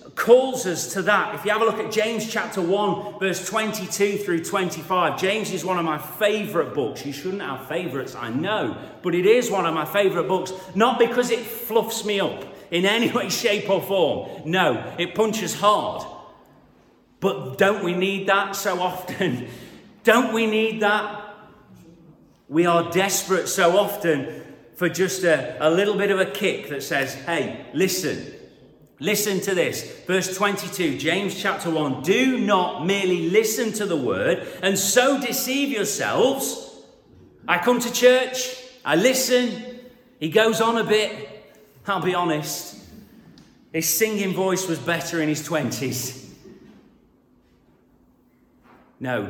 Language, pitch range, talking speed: English, 160-215 Hz, 150 wpm